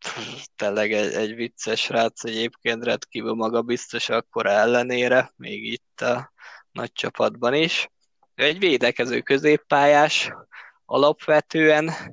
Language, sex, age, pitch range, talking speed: Hungarian, male, 20-39, 125-155 Hz, 110 wpm